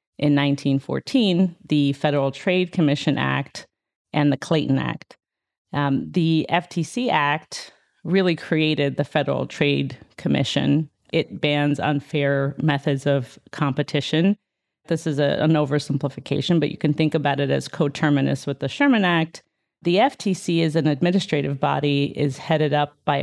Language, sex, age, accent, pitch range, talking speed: English, female, 40-59, American, 145-165 Hz, 140 wpm